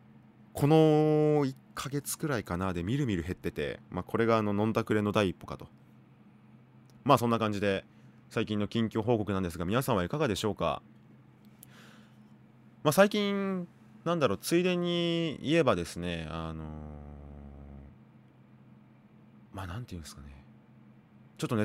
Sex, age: male, 20-39